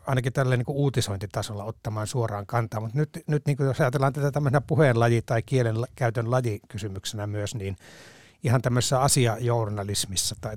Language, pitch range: Finnish, 110-140 Hz